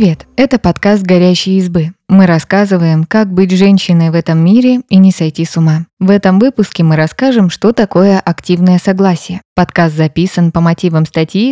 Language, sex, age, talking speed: Russian, female, 20-39, 165 wpm